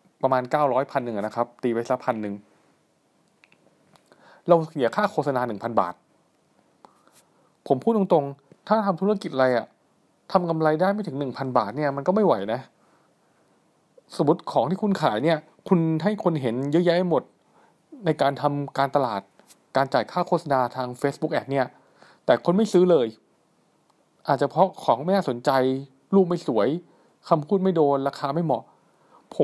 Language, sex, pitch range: Thai, male, 130-175 Hz